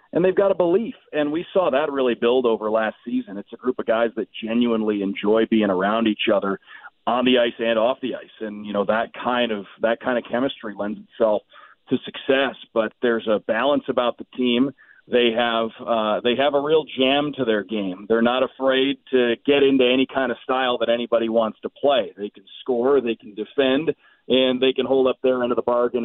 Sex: male